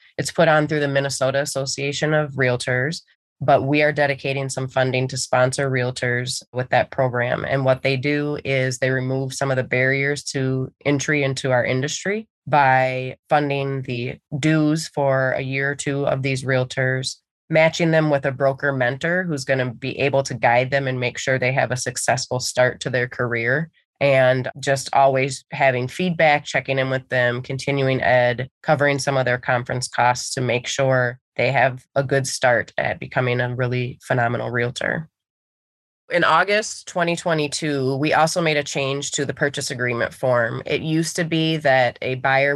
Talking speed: 175 wpm